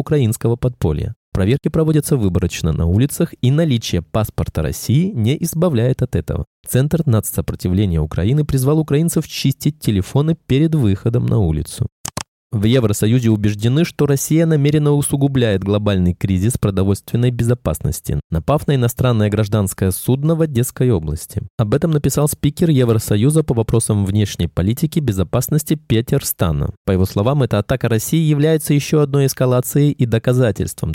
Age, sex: 20-39, male